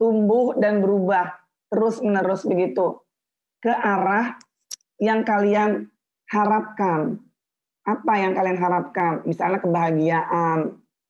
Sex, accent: female, native